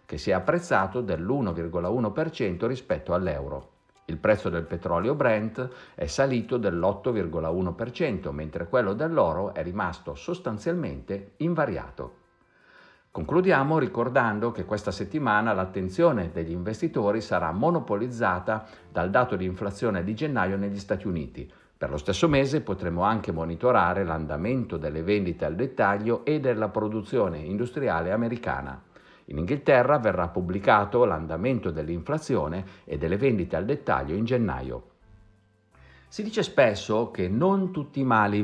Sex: male